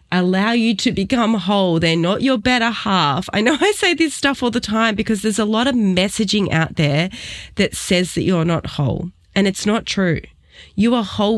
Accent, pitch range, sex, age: Australian, 175-230 Hz, female, 20-39